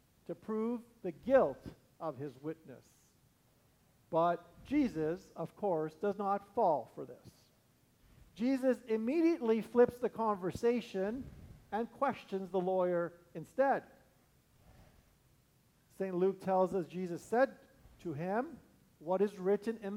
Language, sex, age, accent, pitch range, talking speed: English, male, 50-69, American, 180-225 Hz, 115 wpm